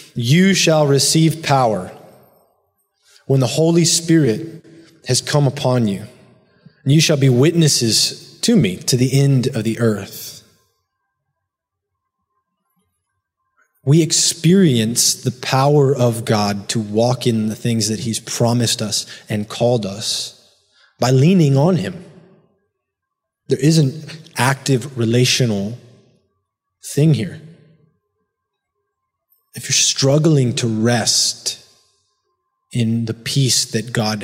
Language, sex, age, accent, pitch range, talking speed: English, male, 20-39, American, 115-155 Hz, 110 wpm